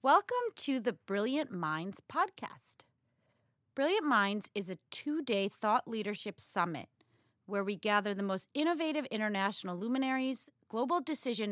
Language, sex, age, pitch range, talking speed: English, female, 30-49, 175-245 Hz, 125 wpm